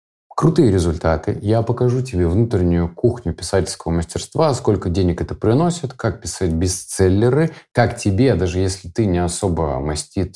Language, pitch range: Russian, 90-120 Hz